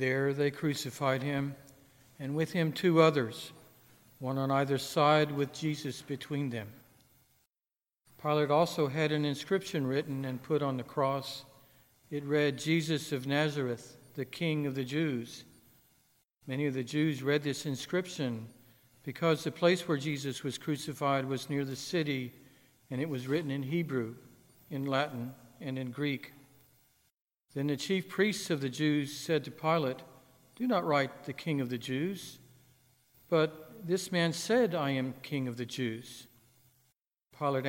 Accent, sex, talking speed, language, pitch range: American, male, 155 wpm, English, 130-155 Hz